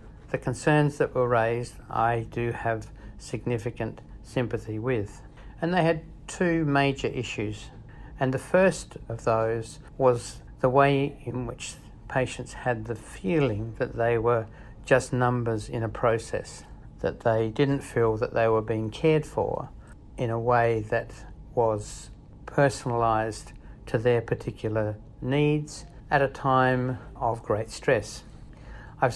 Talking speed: 135 wpm